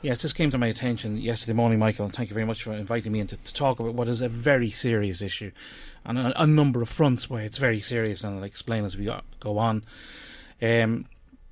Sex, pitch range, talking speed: male, 100-115 Hz, 240 wpm